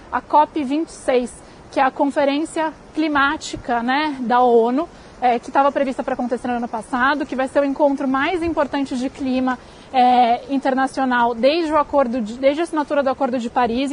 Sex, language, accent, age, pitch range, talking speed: female, Portuguese, Brazilian, 20-39, 255-295 Hz, 165 wpm